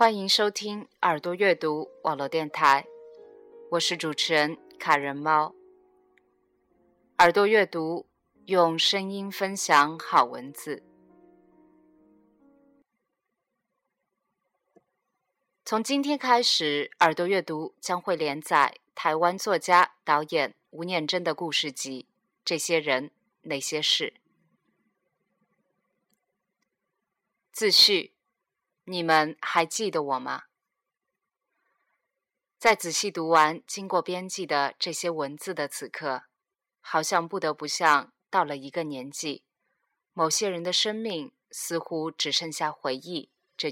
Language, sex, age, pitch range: Chinese, female, 20-39, 155-210 Hz